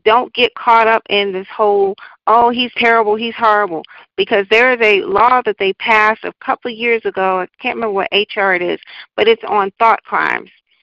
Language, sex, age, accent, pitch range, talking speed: English, female, 40-59, American, 195-240 Hz, 205 wpm